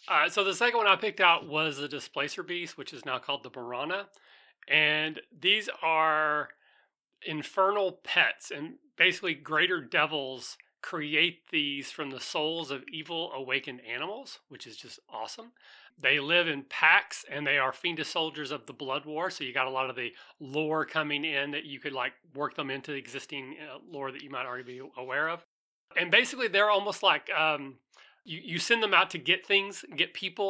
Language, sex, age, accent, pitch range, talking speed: English, male, 30-49, American, 135-170 Hz, 190 wpm